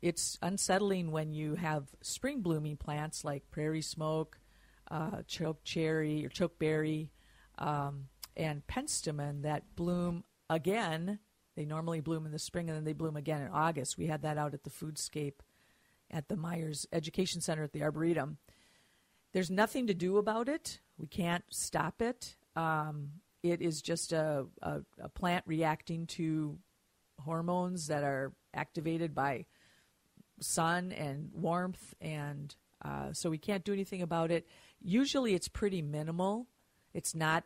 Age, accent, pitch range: 50-69, American, 150-175 Hz